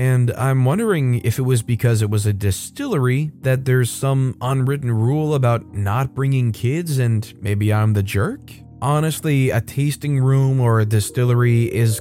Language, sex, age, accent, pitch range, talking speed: English, male, 20-39, American, 110-135 Hz, 165 wpm